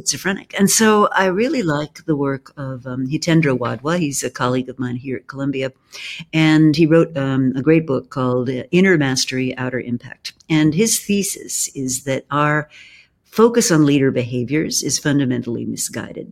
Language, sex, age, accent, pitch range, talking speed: English, female, 60-79, American, 130-170 Hz, 170 wpm